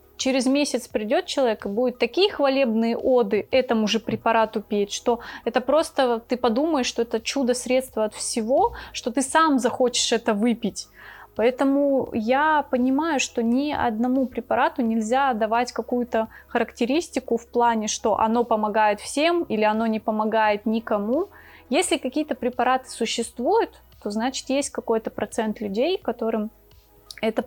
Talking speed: 140 wpm